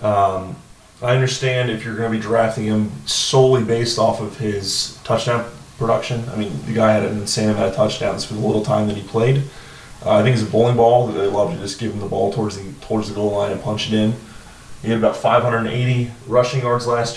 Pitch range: 105-120 Hz